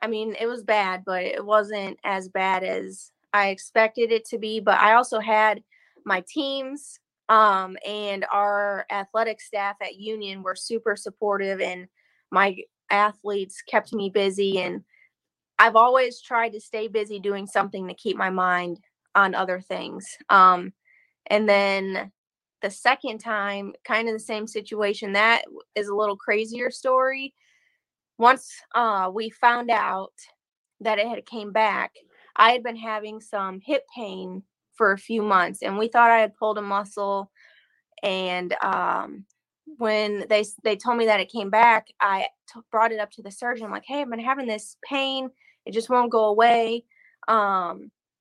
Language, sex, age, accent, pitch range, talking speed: English, female, 20-39, American, 200-230 Hz, 165 wpm